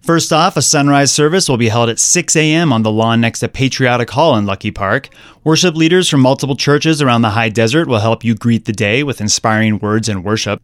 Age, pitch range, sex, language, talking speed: 30-49, 115-140 Hz, male, English, 230 wpm